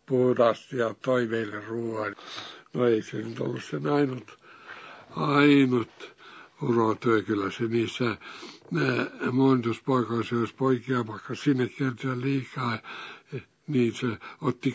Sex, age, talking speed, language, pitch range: male, 60-79, 105 wpm, Finnish, 120-180 Hz